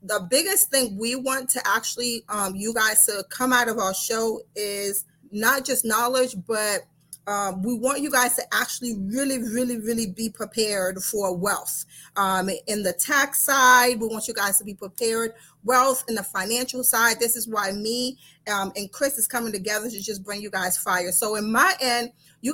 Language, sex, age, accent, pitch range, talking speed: English, female, 30-49, American, 205-255 Hz, 195 wpm